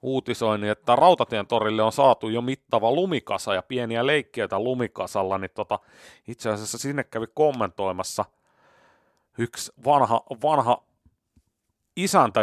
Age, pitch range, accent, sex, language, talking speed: 30-49, 105-140 Hz, native, male, Finnish, 110 wpm